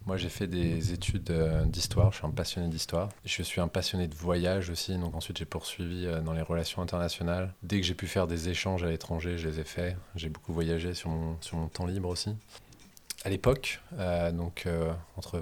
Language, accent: French, French